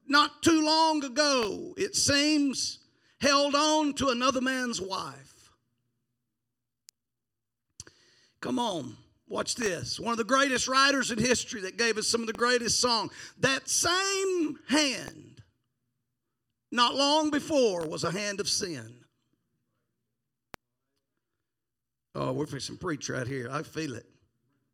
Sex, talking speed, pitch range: male, 125 wpm, 180-270 Hz